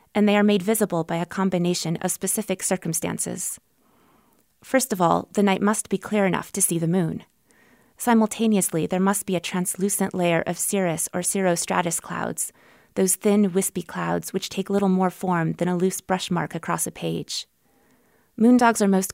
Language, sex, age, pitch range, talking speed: English, female, 20-39, 175-200 Hz, 175 wpm